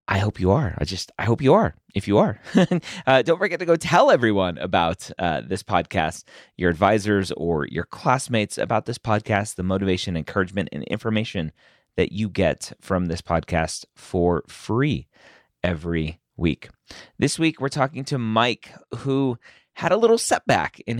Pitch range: 90-125 Hz